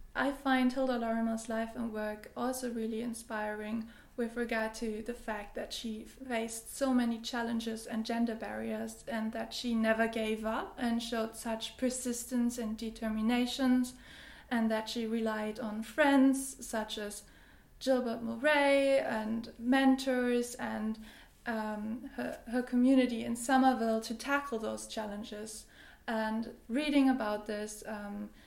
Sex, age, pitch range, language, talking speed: female, 20-39, 220-245 Hz, English, 135 wpm